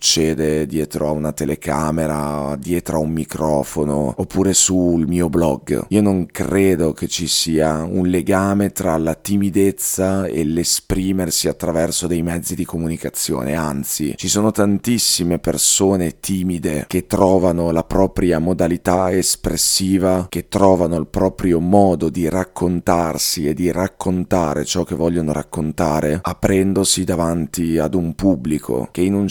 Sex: male